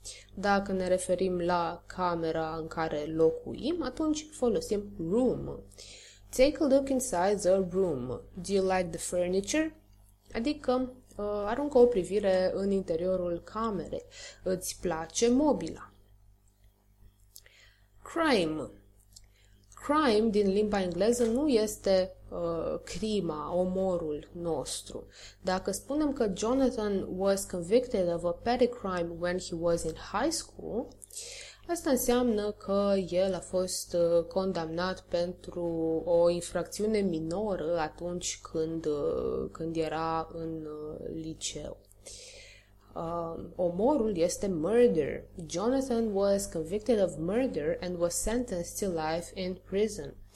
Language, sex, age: Romanian, female, 20-39